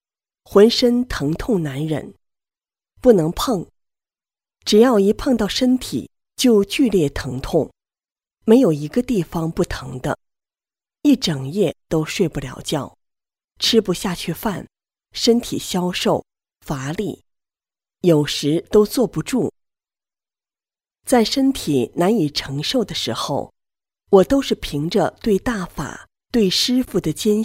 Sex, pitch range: female, 155-235 Hz